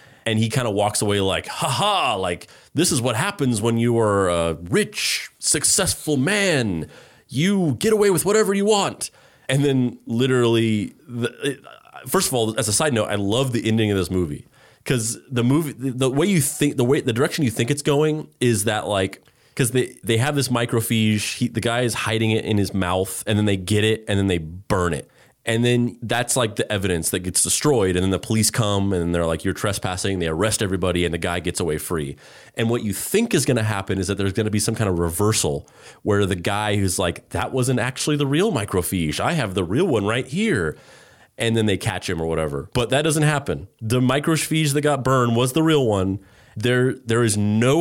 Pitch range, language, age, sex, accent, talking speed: 100-130 Hz, English, 30-49, male, American, 220 wpm